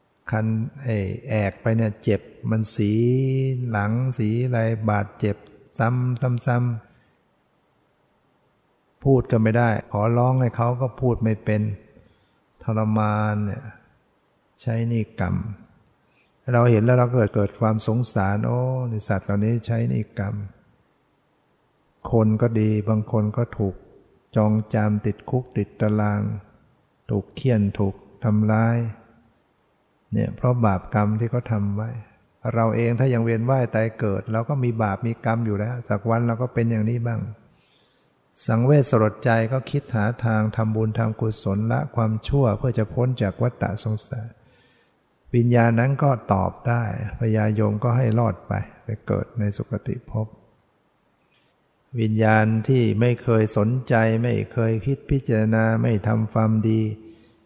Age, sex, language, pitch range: 60-79, male, English, 105-120 Hz